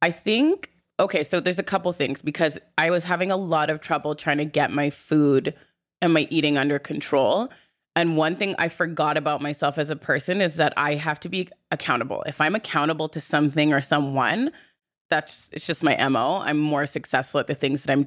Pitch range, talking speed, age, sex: 145-175 Hz, 210 wpm, 20-39, female